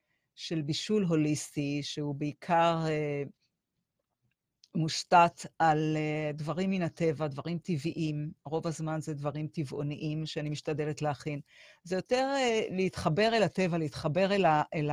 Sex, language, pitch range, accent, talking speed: female, Hebrew, 155-185 Hz, native, 130 wpm